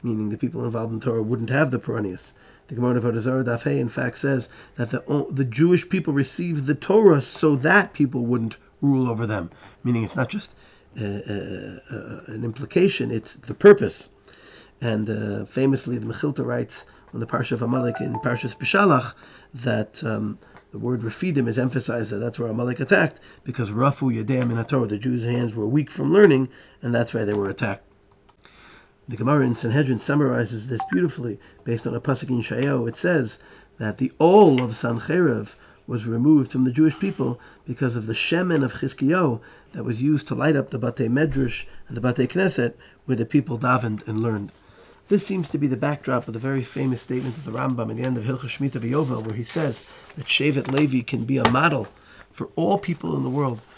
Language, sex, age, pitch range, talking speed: English, male, 40-59, 115-140 Hz, 195 wpm